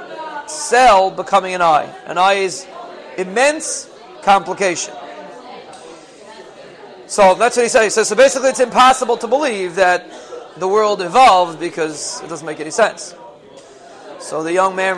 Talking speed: 140 wpm